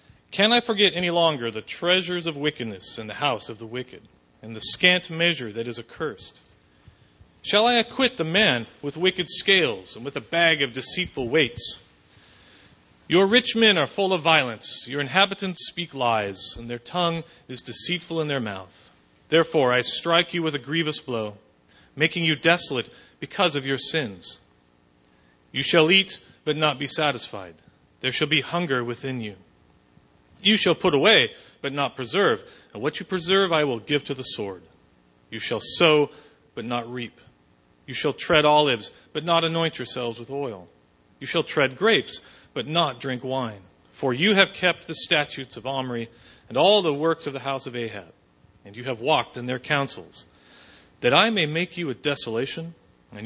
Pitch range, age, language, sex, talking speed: 115-170 Hz, 40-59, English, male, 175 wpm